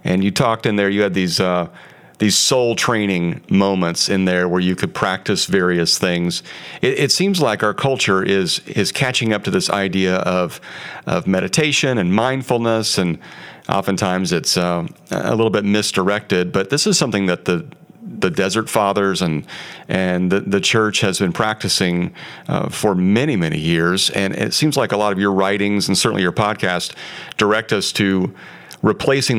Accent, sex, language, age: American, male, English, 40-59